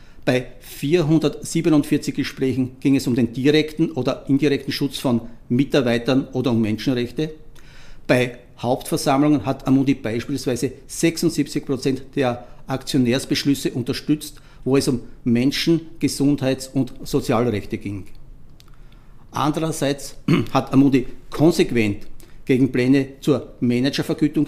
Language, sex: German, male